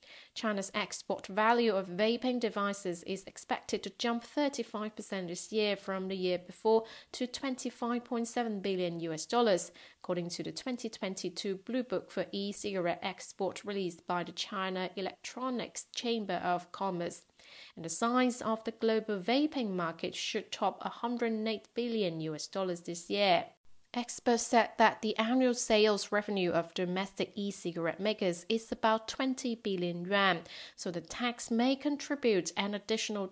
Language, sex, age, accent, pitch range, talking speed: English, female, 30-49, British, 180-225 Hz, 140 wpm